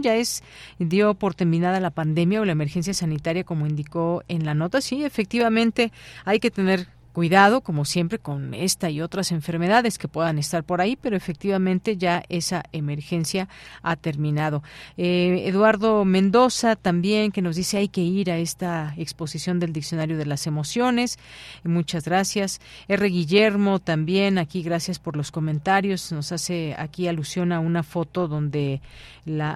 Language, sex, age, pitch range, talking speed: Spanish, female, 40-59, 165-195 Hz, 160 wpm